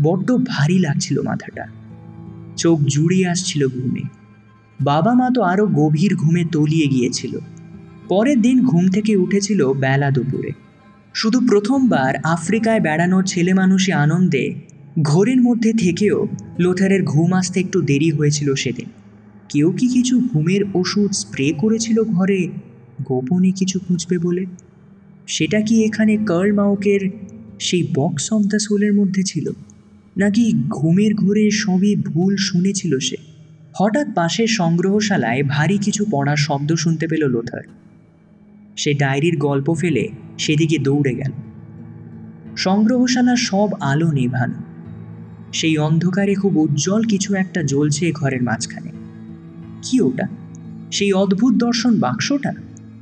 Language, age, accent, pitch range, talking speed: Bengali, 20-39, native, 145-205 Hz, 120 wpm